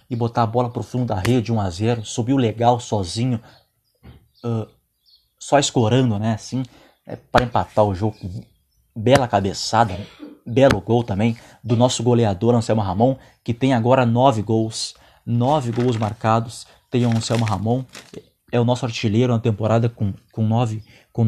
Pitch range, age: 115-140 Hz, 20-39